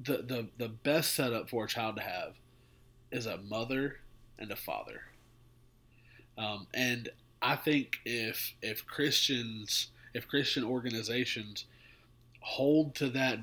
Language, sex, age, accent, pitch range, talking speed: English, male, 30-49, American, 120-150 Hz, 130 wpm